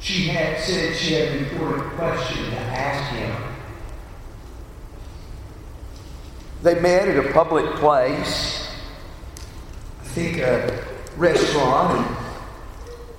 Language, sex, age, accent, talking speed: English, male, 50-69, American, 95 wpm